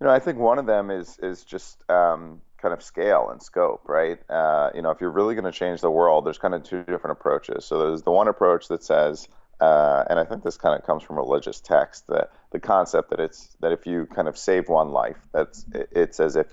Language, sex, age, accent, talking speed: English, male, 40-59, American, 250 wpm